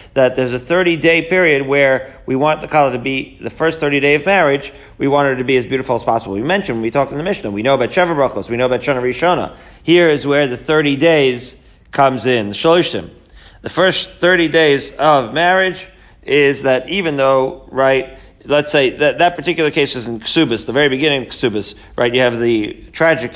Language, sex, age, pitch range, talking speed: English, male, 40-59, 125-155 Hz, 210 wpm